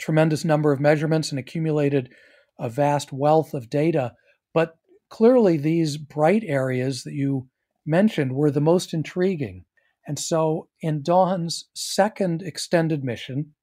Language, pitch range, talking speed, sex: English, 135-170 Hz, 130 wpm, male